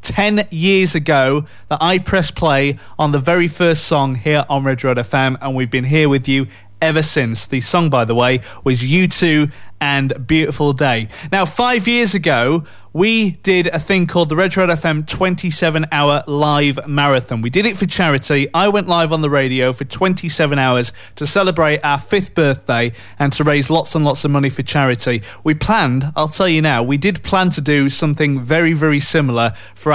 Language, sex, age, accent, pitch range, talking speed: English, male, 30-49, British, 130-170 Hz, 195 wpm